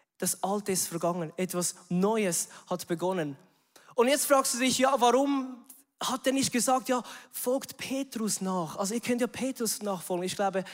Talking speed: 175 wpm